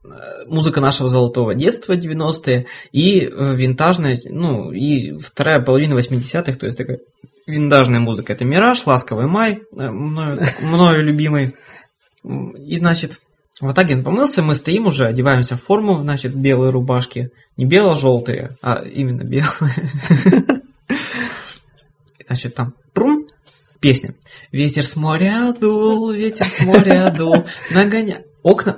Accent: native